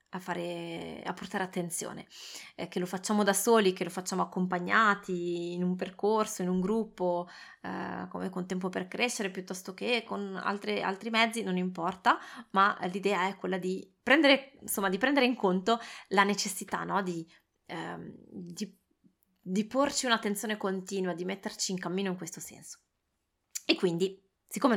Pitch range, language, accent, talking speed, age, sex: 185-220 Hz, Italian, native, 160 wpm, 20-39, female